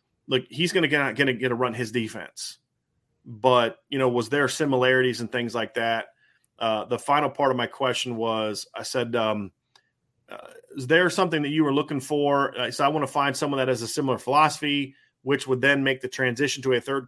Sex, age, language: male, 30-49, English